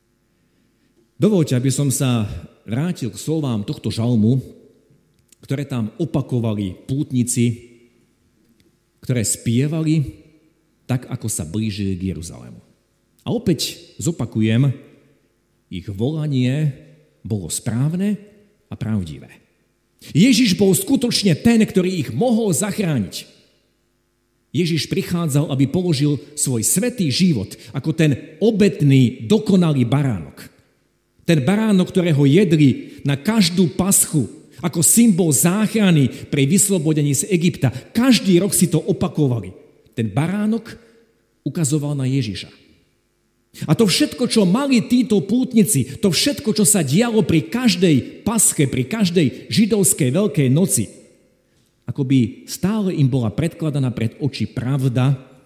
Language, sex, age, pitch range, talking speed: Slovak, male, 50-69, 120-190 Hz, 110 wpm